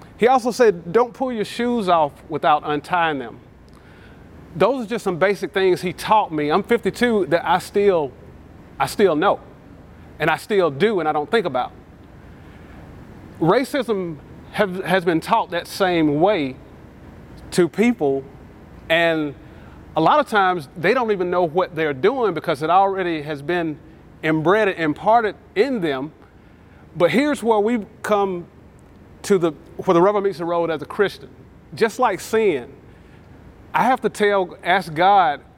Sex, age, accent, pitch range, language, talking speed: male, 30-49, American, 150-205 Hz, English, 160 wpm